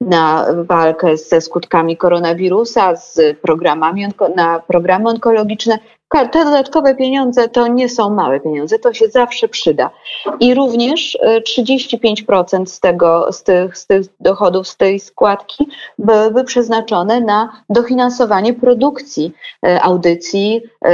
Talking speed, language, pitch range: 120 wpm, Polish, 170-220 Hz